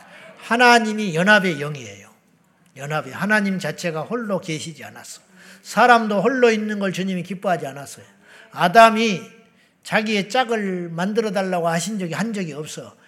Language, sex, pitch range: Korean, male, 165-225 Hz